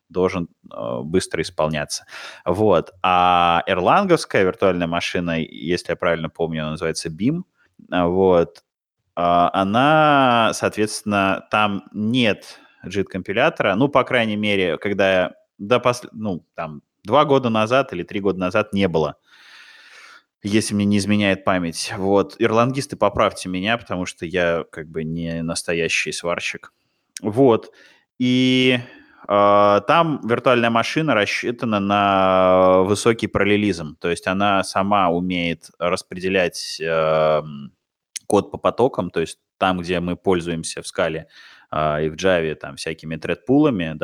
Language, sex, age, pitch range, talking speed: Russian, male, 20-39, 85-105 Hz, 120 wpm